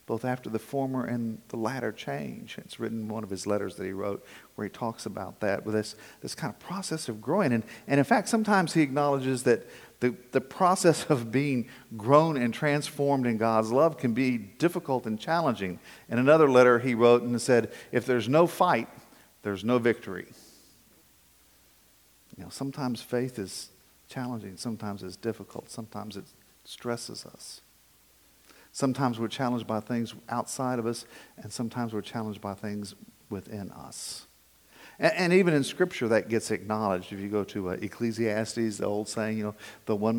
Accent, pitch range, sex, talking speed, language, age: American, 110-130 Hz, male, 180 wpm, English, 50-69